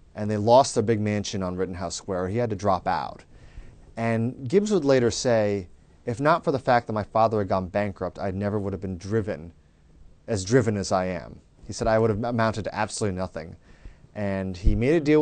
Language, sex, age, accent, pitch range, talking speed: English, male, 30-49, American, 95-115 Hz, 215 wpm